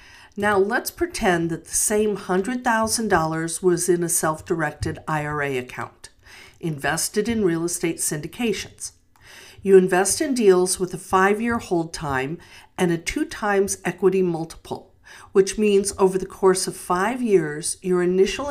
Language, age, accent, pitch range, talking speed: English, 50-69, American, 155-200 Hz, 145 wpm